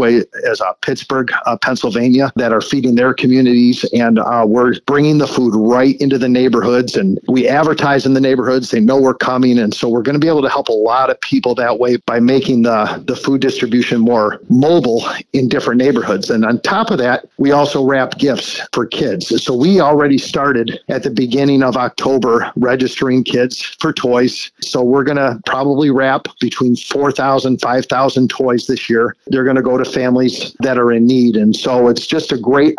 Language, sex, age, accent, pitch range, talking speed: English, male, 50-69, American, 120-135 Hz, 200 wpm